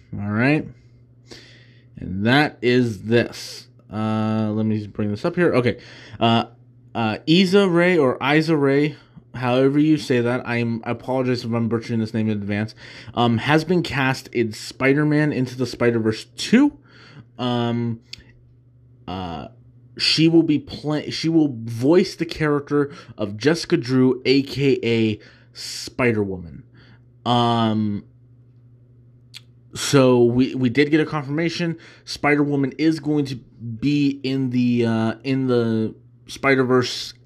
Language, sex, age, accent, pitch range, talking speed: English, male, 20-39, American, 115-135 Hz, 125 wpm